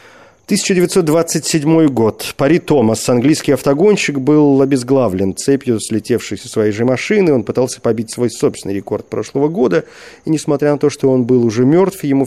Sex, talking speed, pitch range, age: male, 150 wpm, 105-150 Hz, 40-59